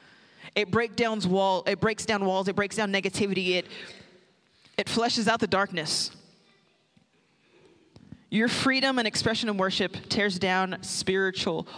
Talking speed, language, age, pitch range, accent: 140 wpm, English, 20-39, 190-235 Hz, American